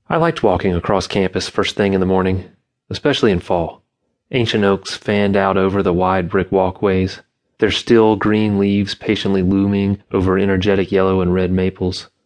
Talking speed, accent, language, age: 165 wpm, American, English, 30-49